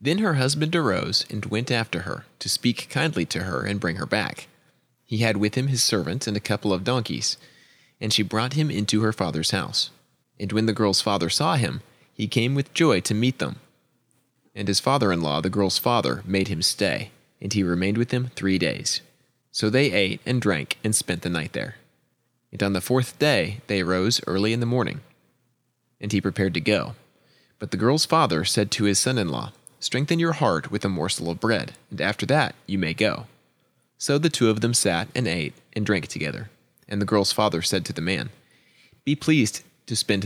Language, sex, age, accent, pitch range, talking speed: English, male, 30-49, American, 100-125 Hz, 205 wpm